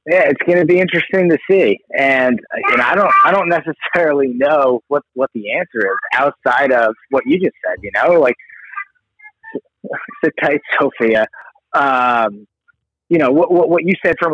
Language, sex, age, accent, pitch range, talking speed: English, male, 30-49, American, 120-190 Hz, 175 wpm